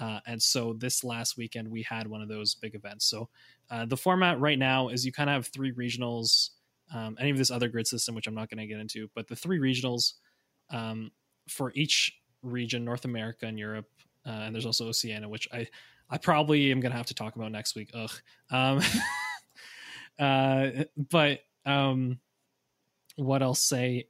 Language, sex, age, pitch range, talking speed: English, male, 20-39, 115-140 Hz, 190 wpm